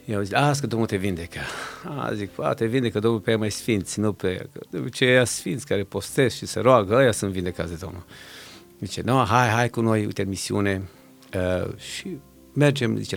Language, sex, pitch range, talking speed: Romanian, male, 95-125 Hz, 190 wpm